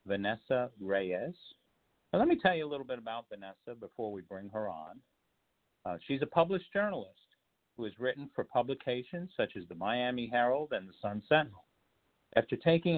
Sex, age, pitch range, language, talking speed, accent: male, 50-69, 105-145 Hz, English, 175 wpm, American